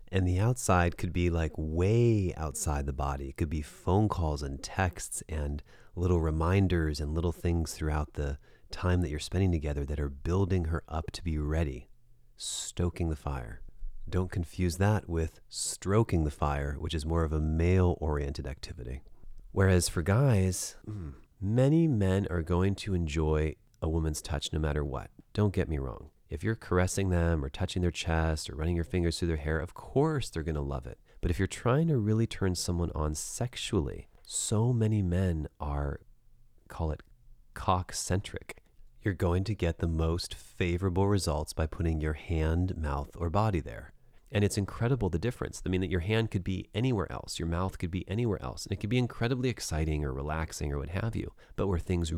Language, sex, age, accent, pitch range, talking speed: English, male, 30-49, American, 80-100 Hz, 190 wpm